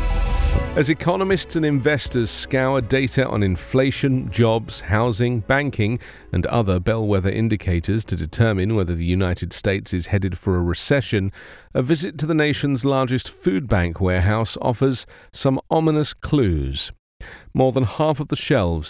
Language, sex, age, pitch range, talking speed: English, male, 40-59, 95-130 Hz, 145 wpm